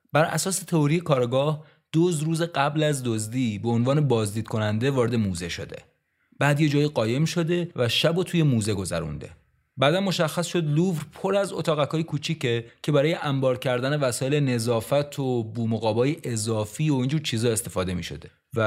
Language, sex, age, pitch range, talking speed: Persian, male, 30-49, 120-160 Hz, 160 wpm